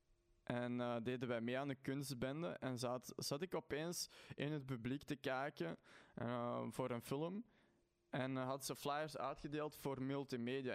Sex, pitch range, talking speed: male, 120-150 Hz, 165 wpm